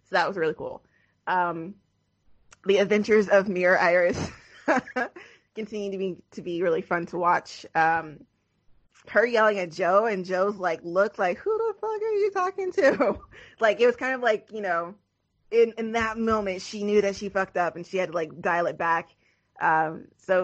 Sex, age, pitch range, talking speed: female, 20-39, 165-210 Hz, 190 wpm